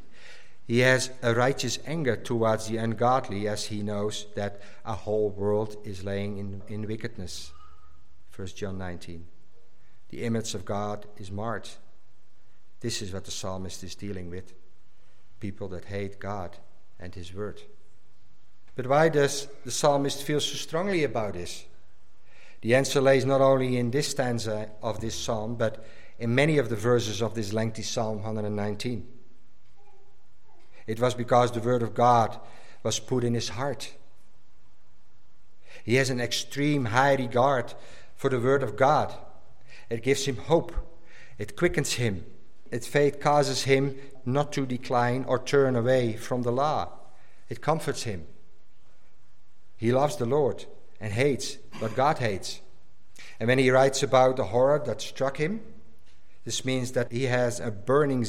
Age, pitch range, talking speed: 50-69, 105-130 Hz, 150 wpm